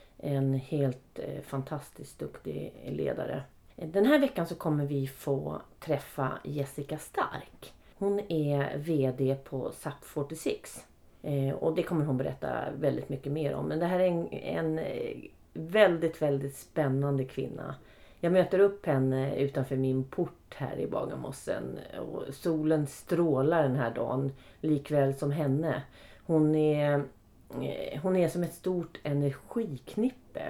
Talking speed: 130 wpm